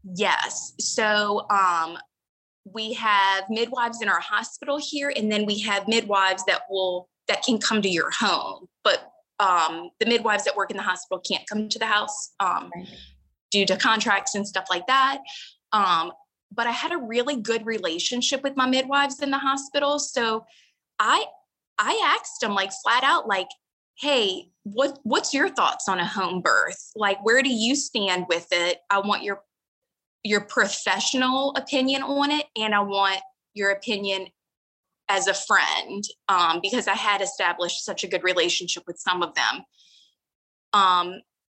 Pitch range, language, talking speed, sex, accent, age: 195-265 Hz, English, 165 wpm, female, American, 20-39